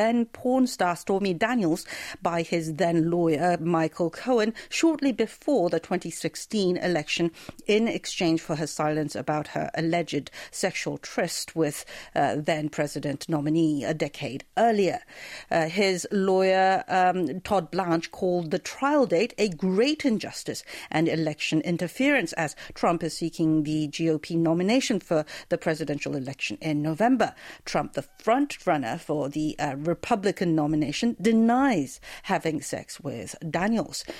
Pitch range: 160-210 Hz